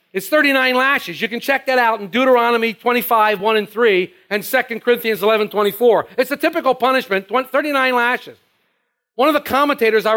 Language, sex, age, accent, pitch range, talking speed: English, male, 50-69, American, 210-275 Hz, 170 wpm